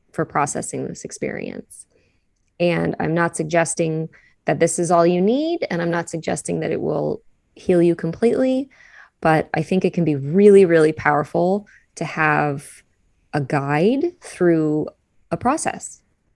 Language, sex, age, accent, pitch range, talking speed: English, female, 20-39, American, 155-180 Hz, 145 wpm